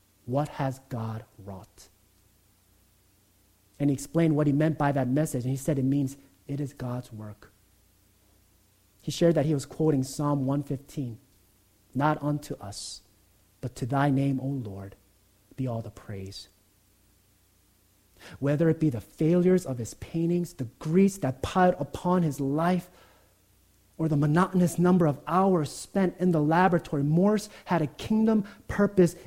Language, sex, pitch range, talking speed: English, male, 100-150 Hz, 150 wpm